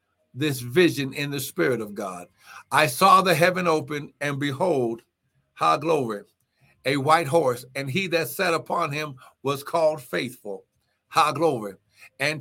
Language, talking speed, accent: English, 150 wpm, American